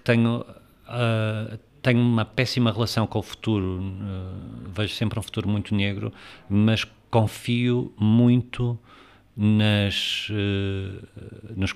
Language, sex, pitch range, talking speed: Portuguese, male, 95-110 Hz, 90 wpm